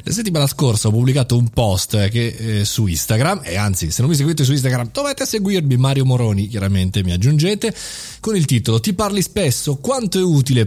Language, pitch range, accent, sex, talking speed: Italian, 110-150 Hz, native, male, 195 wpm